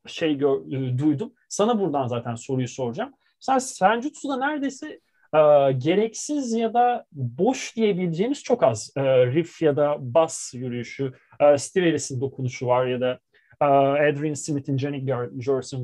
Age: 30-49